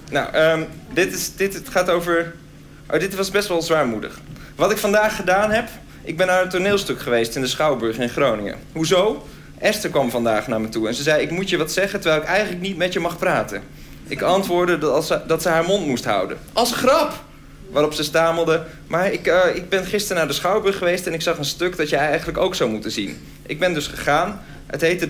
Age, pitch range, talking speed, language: 50-69, 150-195 Hz, 230 wpm, Dutch